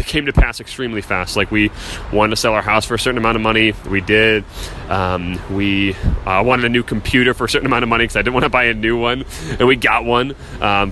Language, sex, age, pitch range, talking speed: English, male, 20-39, 95-115 Hz, 260 wpm